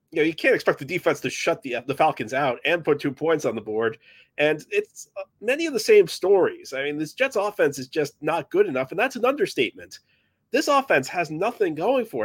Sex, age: male, 30-49